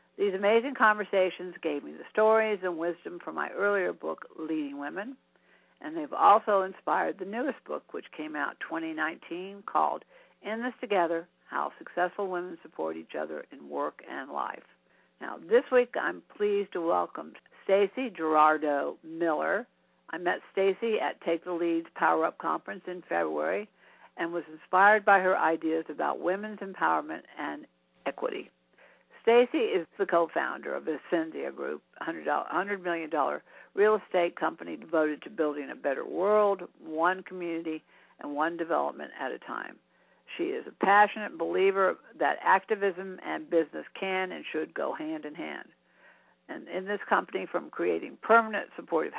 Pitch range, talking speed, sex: 165-210 Hz, 150 wpm, female